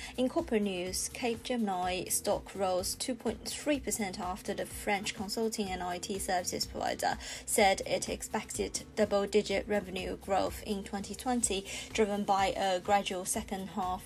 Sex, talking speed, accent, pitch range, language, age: female, 125 wpm, British, 195-220 Hz, English, 20-39